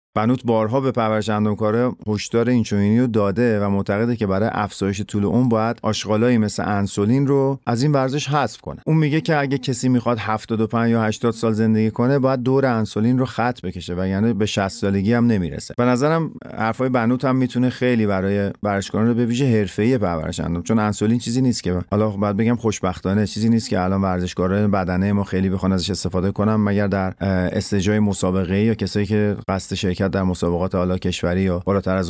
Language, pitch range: Persian, 95-115 Hz